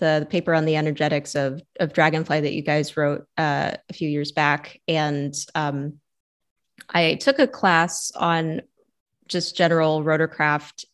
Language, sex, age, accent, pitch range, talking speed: English, female, 20-39, American, 150-170 Hz, 150 wpm